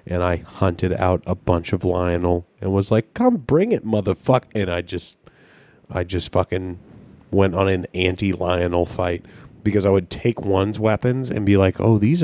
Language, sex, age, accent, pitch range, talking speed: English, male, 30-49, American, 90-105 Hz, 180 wpm